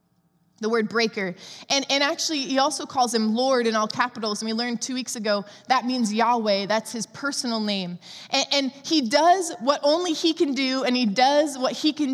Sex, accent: female, American